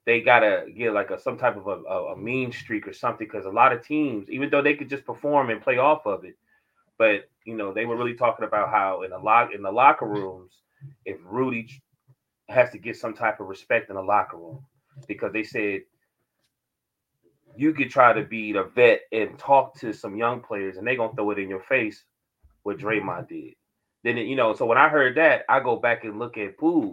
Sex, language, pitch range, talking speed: male, English, 105-150 Hz, 230 wpm